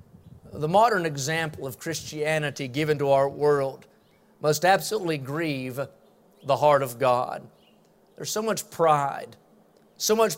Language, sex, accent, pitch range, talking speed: English, male, American, 160-205 Hz, 125 wpm